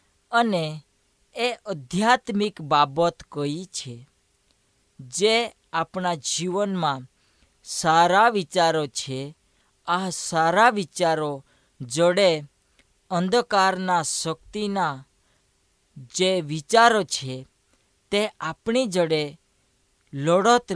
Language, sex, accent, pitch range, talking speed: Hindi, female, native, 140-205 Hz, 65 wpm